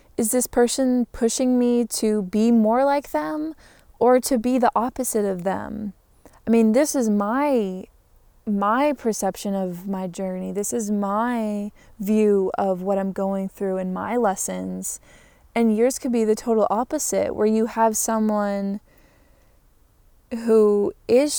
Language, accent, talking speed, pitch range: English, American, 145 wpm, 195-225 Hz